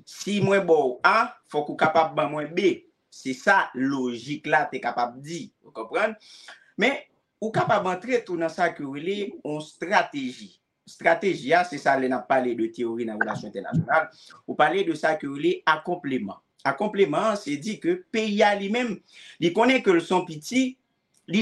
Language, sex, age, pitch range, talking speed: French, male, 50-69, 150-230 Hz, 180 wpm